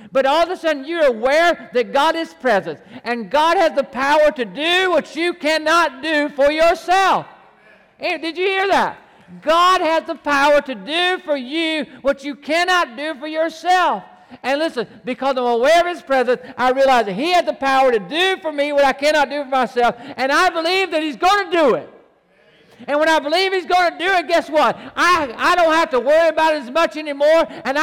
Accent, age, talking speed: American, 50-69, 215 wpm